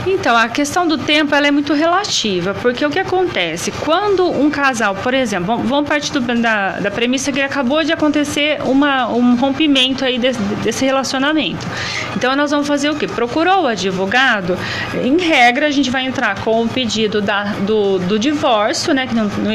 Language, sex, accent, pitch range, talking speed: Portuguese, female, Brazilian, 215-300 Hz, 185 wpm